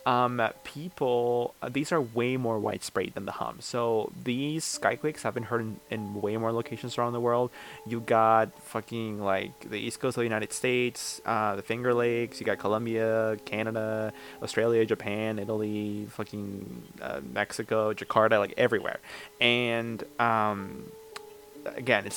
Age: 20-39